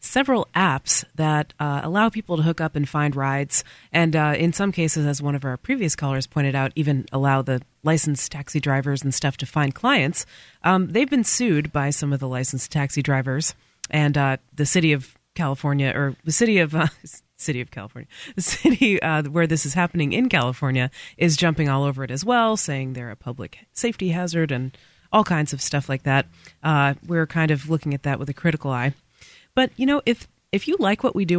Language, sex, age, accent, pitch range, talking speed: English, female, 30-49, American, 140-170 Hz, 210 wpm